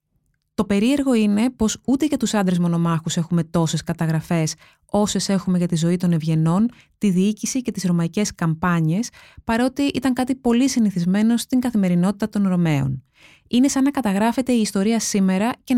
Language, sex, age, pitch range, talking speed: Greek, female, 20-39, 170-230 Hz, 160 wpm